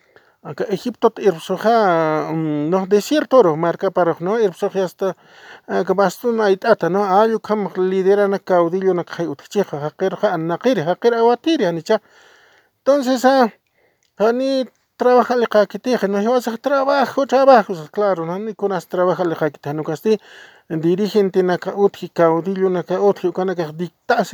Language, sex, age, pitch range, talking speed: English, male, 50-69, 175-215 Hz, 85 wpm